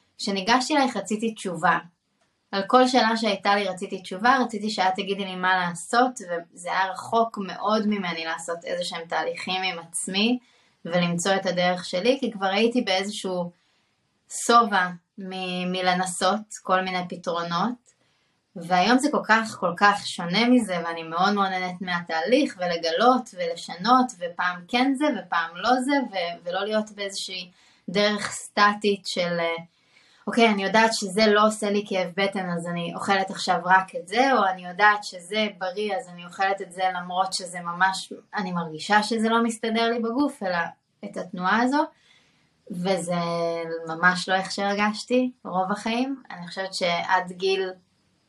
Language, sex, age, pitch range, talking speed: Hebrew, female, 20-39, 180-225 Hz, 150 wpm